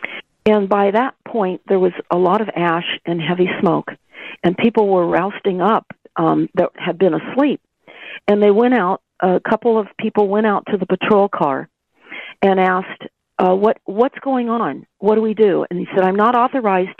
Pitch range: 185-230 Hz